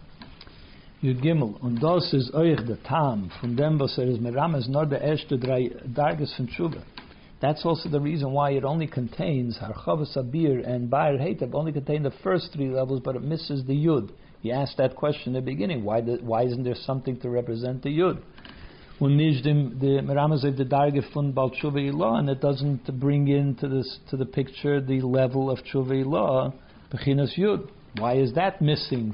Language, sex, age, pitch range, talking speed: English, male, 60-79, 125-150 Hz, 130 wpm